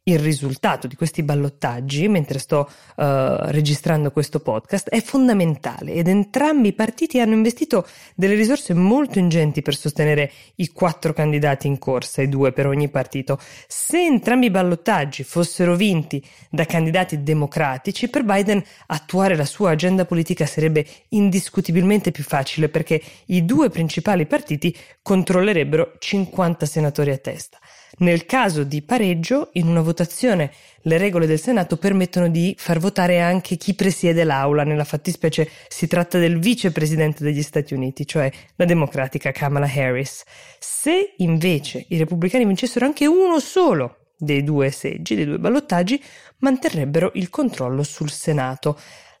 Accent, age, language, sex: native, 20-39, Italian, female